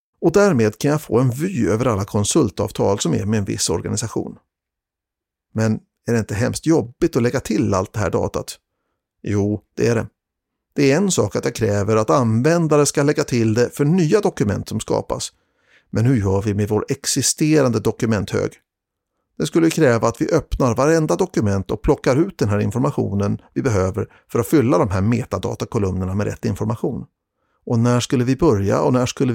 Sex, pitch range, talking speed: male, 105-145 Hz, 190 wpm